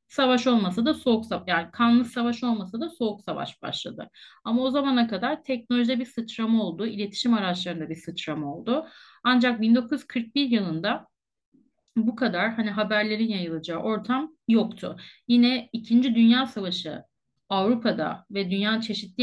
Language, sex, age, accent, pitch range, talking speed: Turkish, female, 30-49, native, 215-260 Hz, 135 wpm